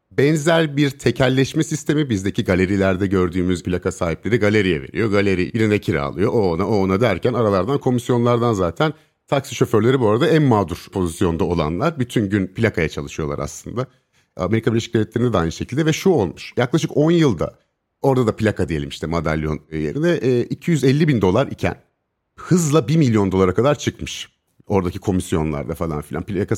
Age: 50-69